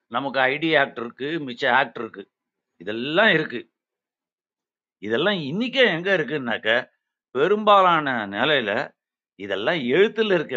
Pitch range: 130-165 Hz